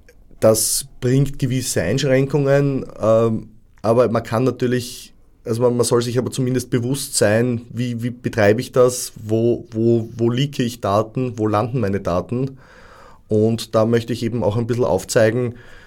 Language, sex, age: German, male, 20-39